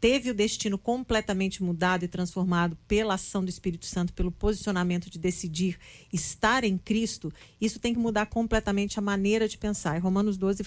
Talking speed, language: 175 wpm, Portuguese